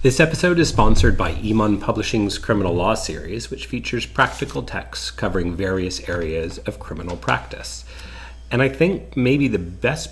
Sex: male